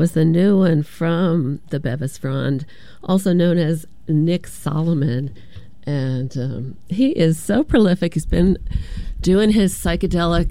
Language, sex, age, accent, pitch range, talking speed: English, female, 40-59, American, 140-170 Hz, 135 wpm